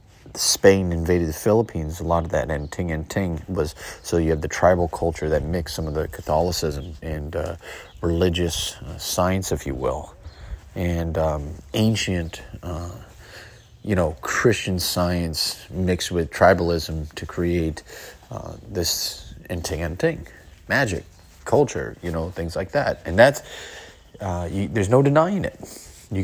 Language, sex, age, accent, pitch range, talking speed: English, male, 30-49, American, 85-115 Hz, 155 wpm